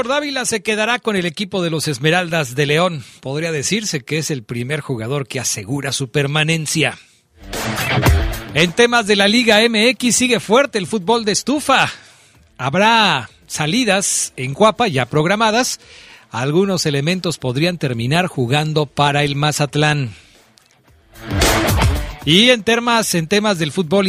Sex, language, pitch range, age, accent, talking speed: male, Spanish, 130-200 Hz, 40-59, Mexican, 135 wpm